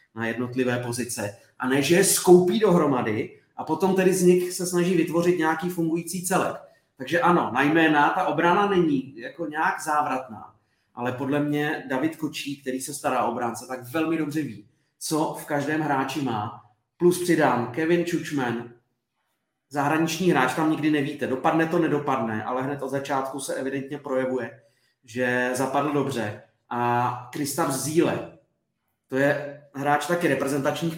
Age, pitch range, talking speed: 30-49, 125-150 Hz, 150 wpm